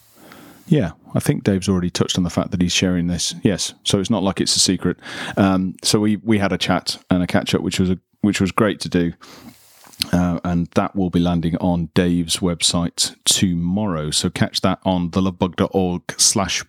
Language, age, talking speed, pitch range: English, 40-59, 200 wpm, 90-105 Hz